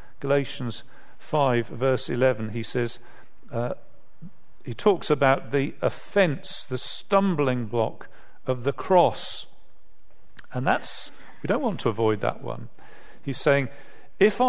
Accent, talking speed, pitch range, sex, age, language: British, 125 wpm, 125-165 Hz, male, 50-69, English